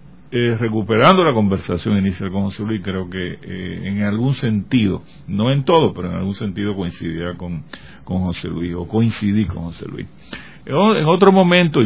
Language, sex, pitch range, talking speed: Spanish, male, 95-115 Hz, 170 wpm